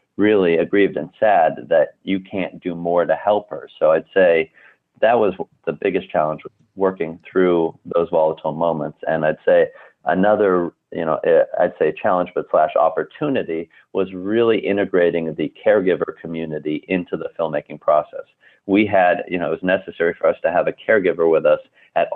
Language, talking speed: English, 170 wpm